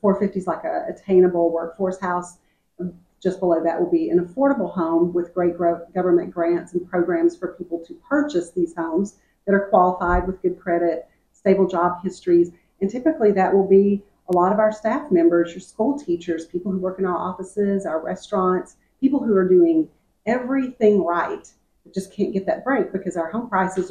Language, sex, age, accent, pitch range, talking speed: English, female, 40-59, American, 175-200 Hz, 190 wpm